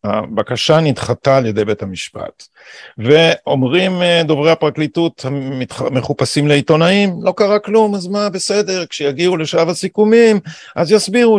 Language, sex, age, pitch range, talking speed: Hebrew, male, 50-69, 125-165 Hz, 115 wpm